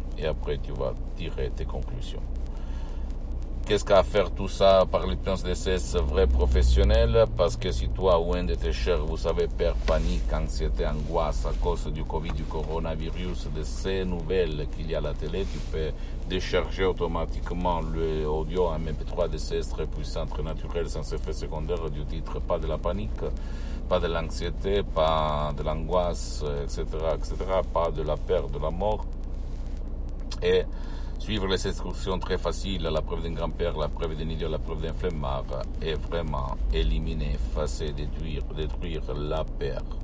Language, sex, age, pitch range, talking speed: Italian, male, 60-79, 65-80 Hz, 170 wpm